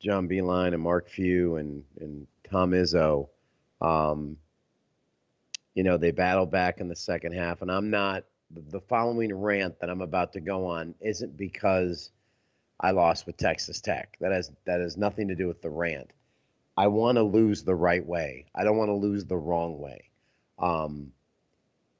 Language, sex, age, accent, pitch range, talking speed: English, male, 40-59, American, 90-105 Hz, 175 wpm